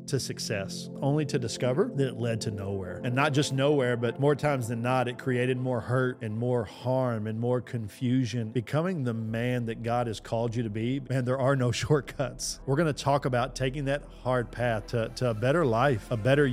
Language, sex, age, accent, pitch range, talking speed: English, male, 40-59, American, 105-125 Hz, 220 wpm